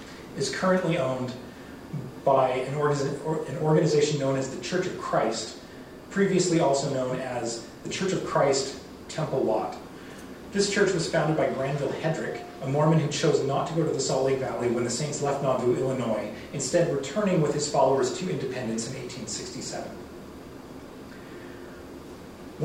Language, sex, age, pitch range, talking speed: English, male, 30-49, 135-180 Hz, 150 wpm